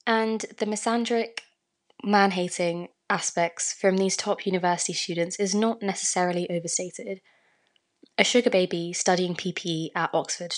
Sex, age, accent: female, 20-39, British